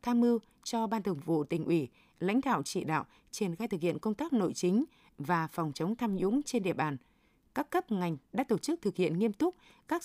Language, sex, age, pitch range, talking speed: Vietnamese, female, 20-39, 175-235 Hz, 235 wpm